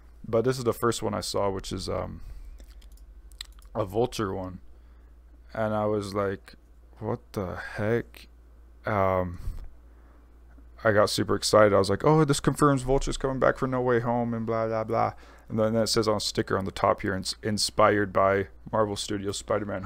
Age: 20-39